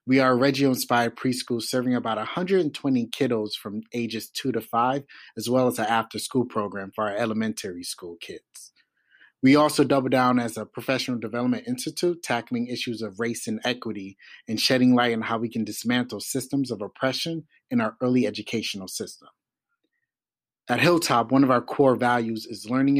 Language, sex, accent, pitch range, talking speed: English, male, American, 115-135 Hz, 170 wpm